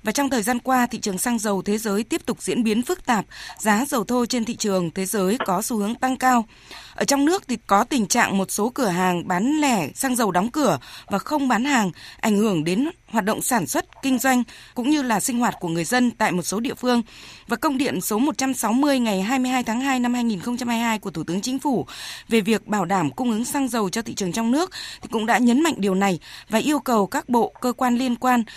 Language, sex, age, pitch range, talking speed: Vietnamese, female, 20-39, 200-255 Hz, 250 wpm